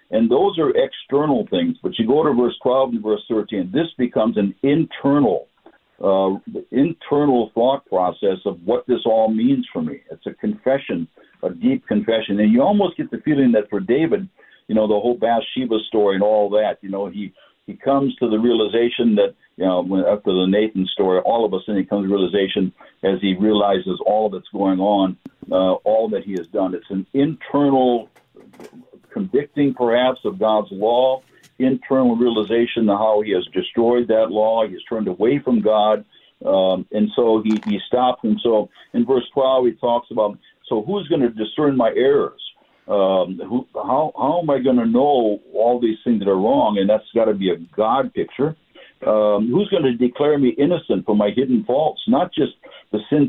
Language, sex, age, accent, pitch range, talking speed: English, male, 60-79, American, 105-135 Hz, 190 wpm